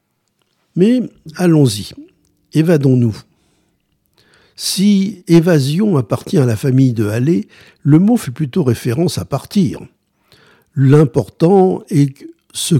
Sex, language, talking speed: male, French, 100 wpm